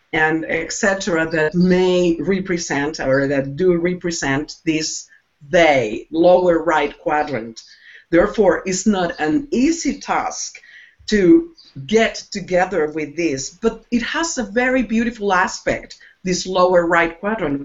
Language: English